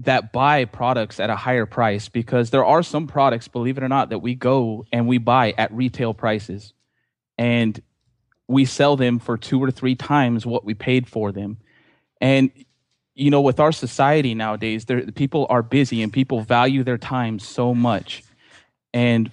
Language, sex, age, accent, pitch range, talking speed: English, male, 30-49, American, 115-135 Hz, 175 wpm